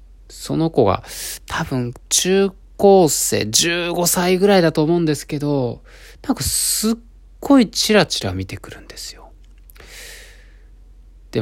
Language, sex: Japanese, male